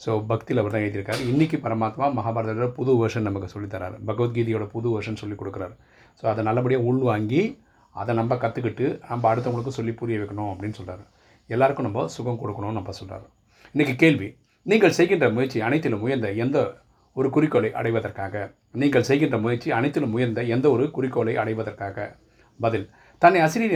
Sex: male